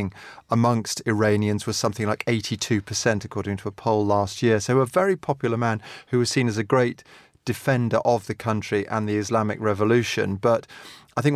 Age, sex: 30-49, male